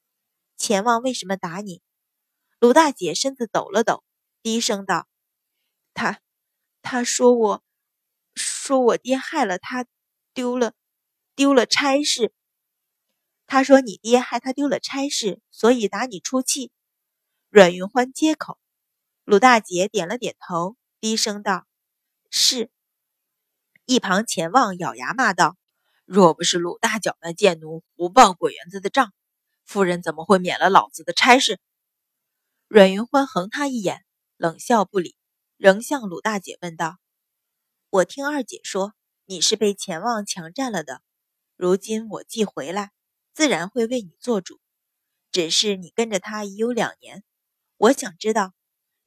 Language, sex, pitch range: Chinese, female, 185-250 Hz